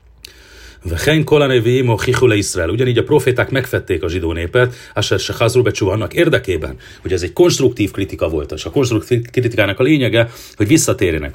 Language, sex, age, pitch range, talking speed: Hungarian, male, 40-59, 95-125 Hz, 135 wpm